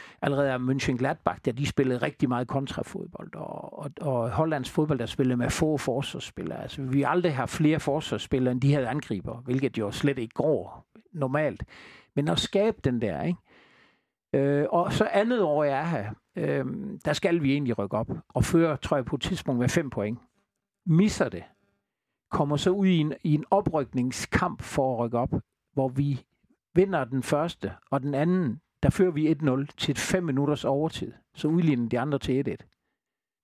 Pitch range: 130-165 Hz